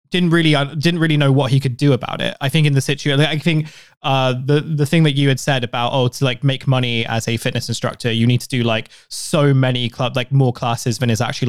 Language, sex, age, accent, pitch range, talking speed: English, male, 20-39, British, 120-145 Hz, 270 wpm